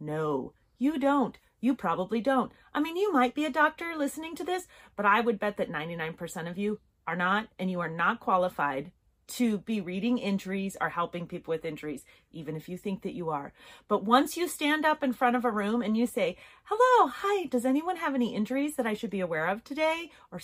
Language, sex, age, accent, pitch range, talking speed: English, female, 30-49, American, 185-280 Hz, 220 wpm